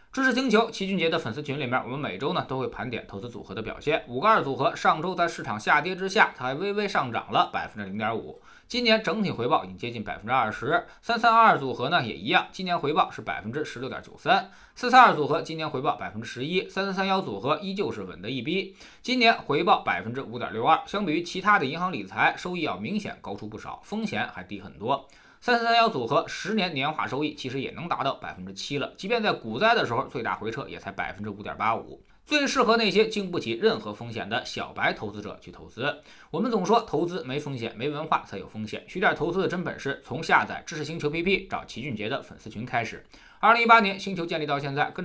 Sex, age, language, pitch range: male, 20-39, Chinese, 140-225 Hz